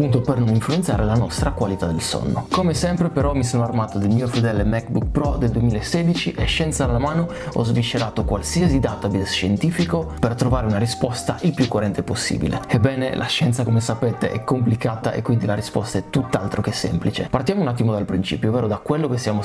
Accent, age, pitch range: native, 20-39, 105-130 Hz